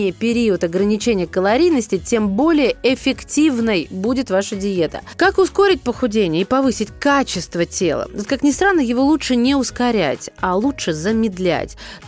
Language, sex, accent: Russian, female, native